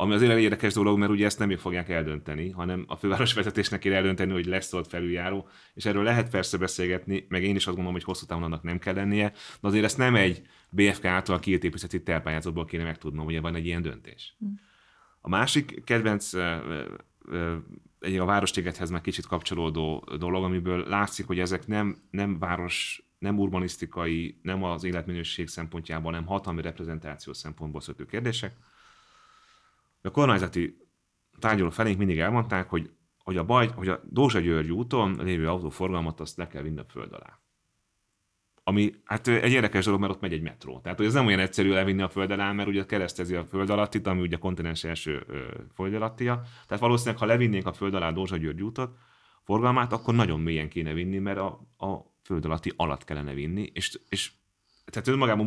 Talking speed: 180 wpm